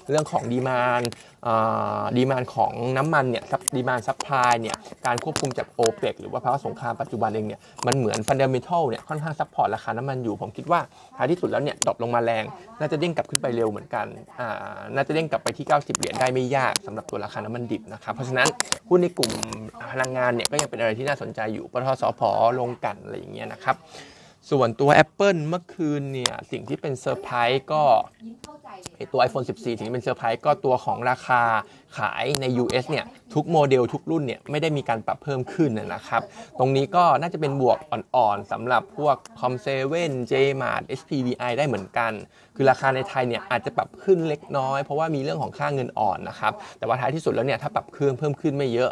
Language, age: Thai, 20-39